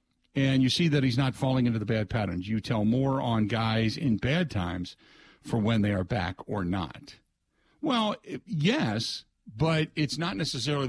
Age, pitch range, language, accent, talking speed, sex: 50-69, 105-135 Hz, English, American, 175 wpm, male